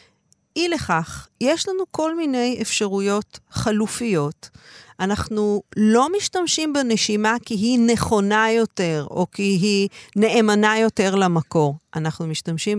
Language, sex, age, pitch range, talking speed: Hebrew, female, 40-59, 160-210 Hz, 115 wpm